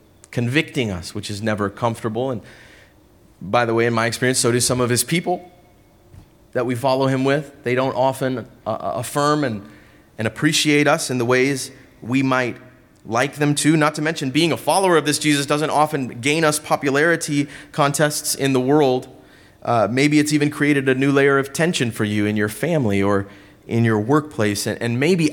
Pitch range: 120-155 Hz